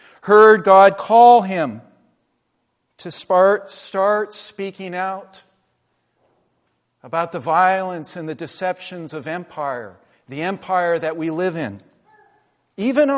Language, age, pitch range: English, 50-69, 160-230 Hz